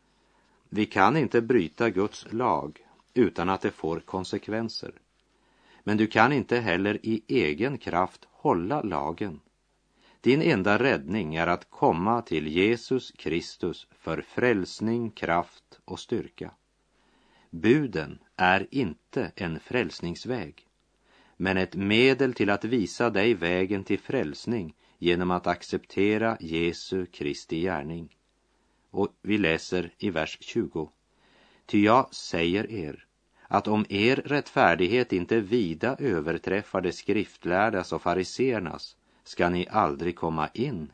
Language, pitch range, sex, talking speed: English, 85-110 Hz, male, 120 wpm